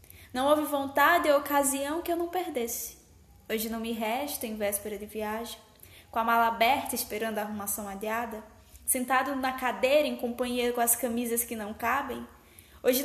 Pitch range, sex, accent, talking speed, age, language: 210-260 Hz, female, Brazilian, 170 wpm, 10-29, Portuguese